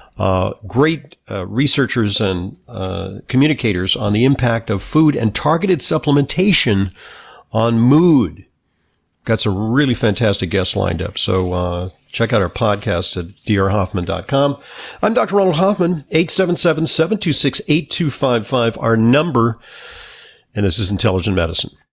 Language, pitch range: English, 105-150 Hz